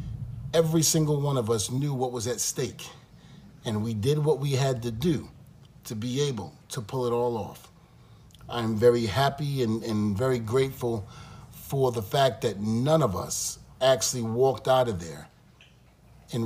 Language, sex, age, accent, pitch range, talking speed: English, male, 40-59, American, 110-135 Hz, 170 wpm